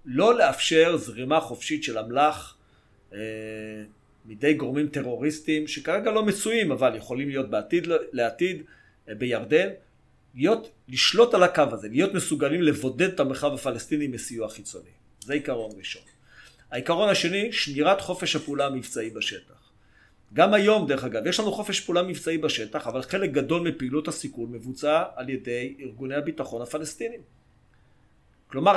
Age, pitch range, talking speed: 40-59, 130-175 Hz, 135 wpm